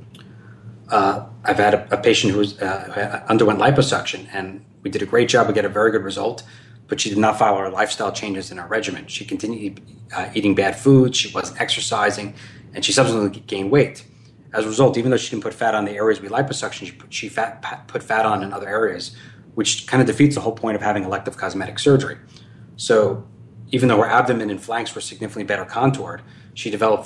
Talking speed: 210 wpm